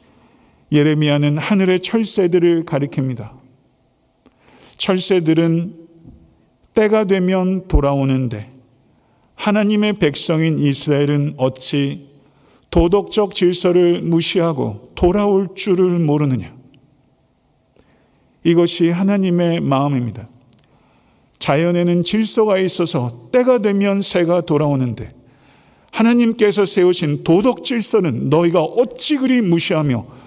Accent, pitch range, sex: native, 140-185 Hz, male